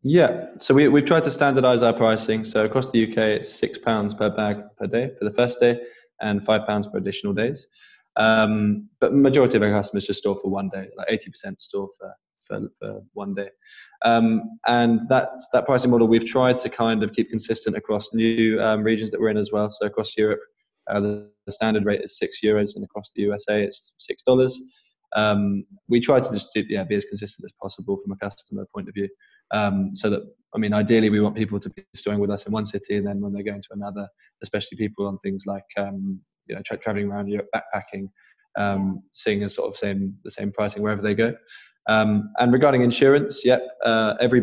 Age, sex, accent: 20-39, male, British